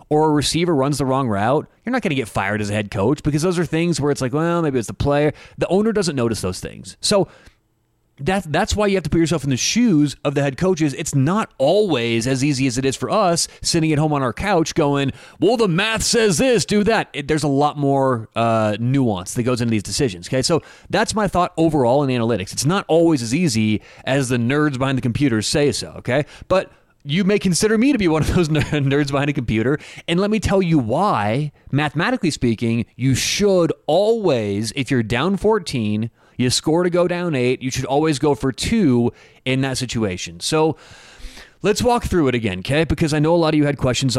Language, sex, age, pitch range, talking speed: English, male, 30-49, 125-170 Hz, 225 wpm